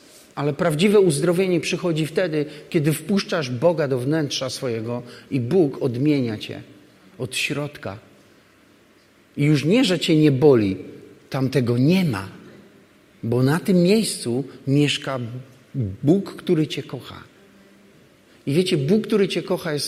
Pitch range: 130-155 Hz